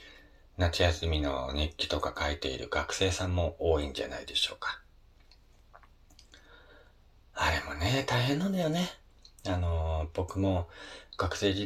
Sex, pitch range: male, 75-100 Hz